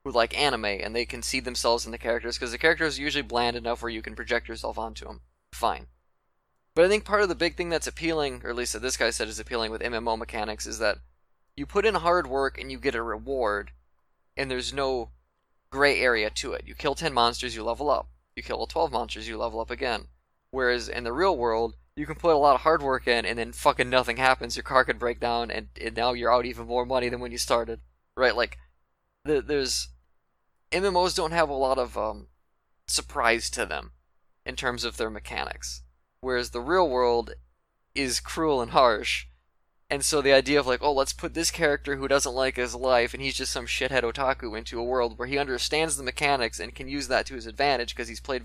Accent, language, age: American, English, 20-39